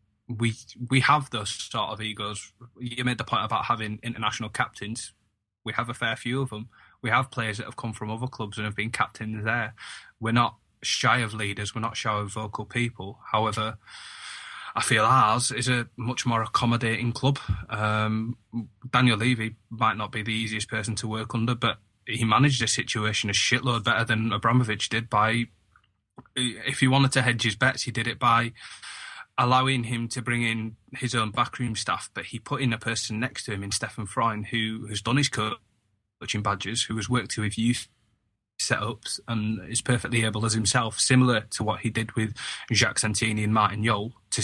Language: English